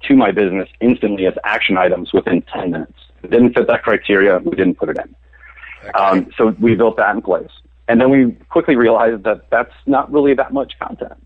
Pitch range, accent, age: 95-115 Hz, American, 30-49